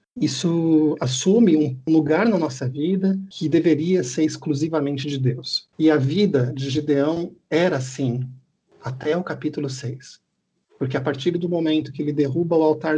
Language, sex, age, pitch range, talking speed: Portuguese, male, 50-69, 135-160 Hz, 155 wpm